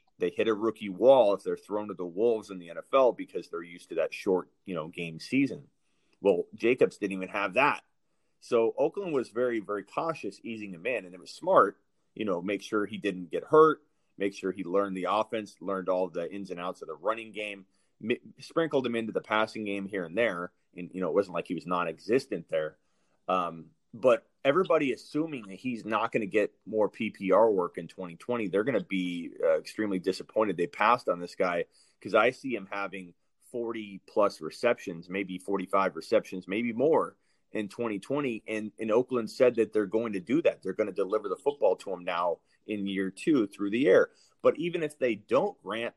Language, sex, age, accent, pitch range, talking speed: English, male, 30-49, American, 95-140 Hz, 205 wpm